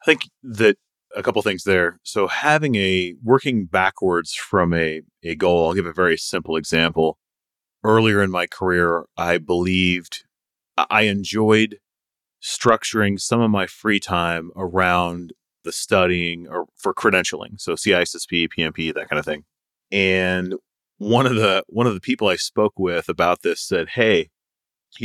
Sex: male